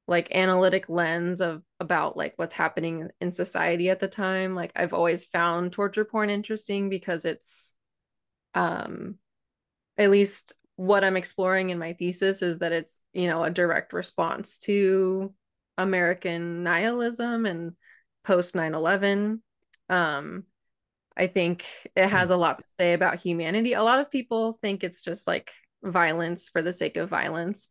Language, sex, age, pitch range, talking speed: English, female, 20-39, 175-200 Hz, 155 wpm